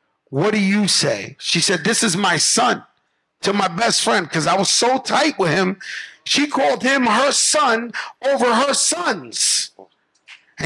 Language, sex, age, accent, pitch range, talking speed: English, male, 50-69, American, 165-230 Hz, 170 wpm